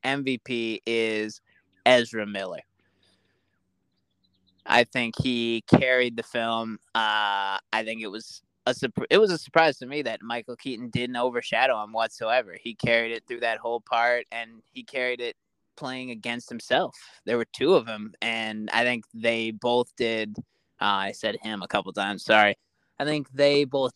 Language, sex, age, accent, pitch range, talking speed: English, male, 20-39, American, 115-130 Hz, 165 wpm